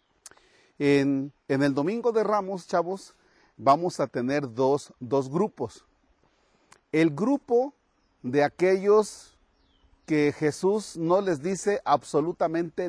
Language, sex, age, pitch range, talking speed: Spanish, male, 40-59, 135-185 Hz, 105 wpm